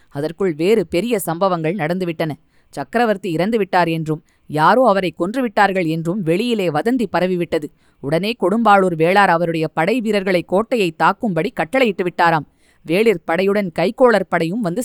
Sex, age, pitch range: female, 20-39, 165-210 Hz